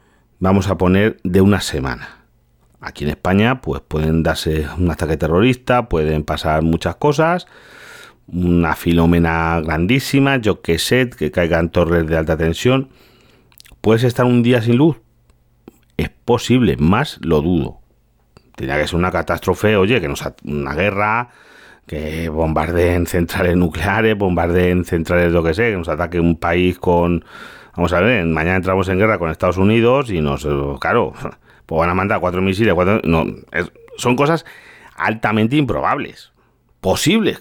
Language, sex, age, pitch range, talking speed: Spanish, male, 40-59, 80-120 Hz, 150 wpm